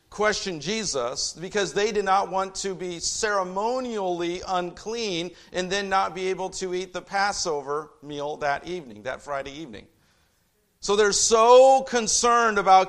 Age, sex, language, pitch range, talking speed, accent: 50-69, male, English, 140-200 Hz, 145 wpm, American